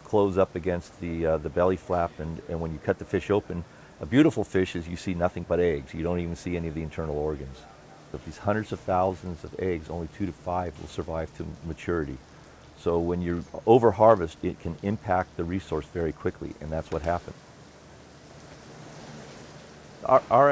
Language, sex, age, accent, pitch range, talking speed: English, male, 50-69, American, 80-100 Hz, 195 wpm